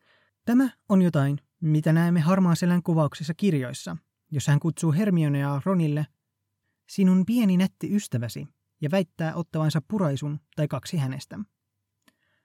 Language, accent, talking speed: Finnish, native, 115 wpm